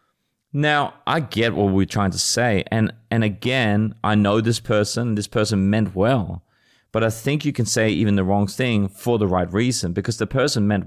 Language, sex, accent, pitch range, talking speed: English, male, Australian, 95-115 Hz, 205 wpm